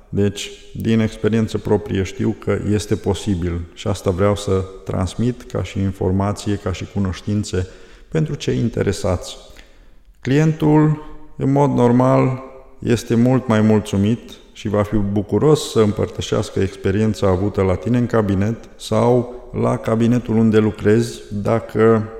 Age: 20-39